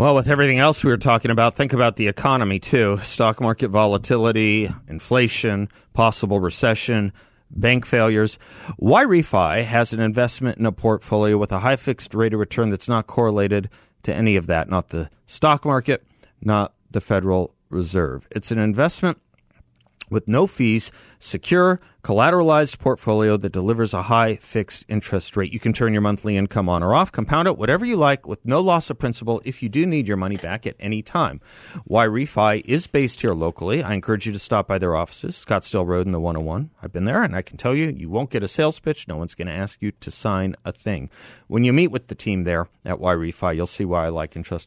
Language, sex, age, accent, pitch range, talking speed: English, male, 40-59, American, 95-125 Hz, 210 wpm